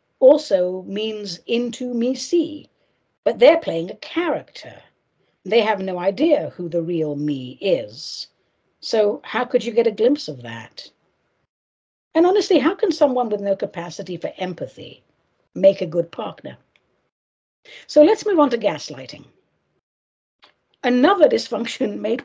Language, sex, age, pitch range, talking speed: English, female, 60-79, 170-255 Hz, 140 wpm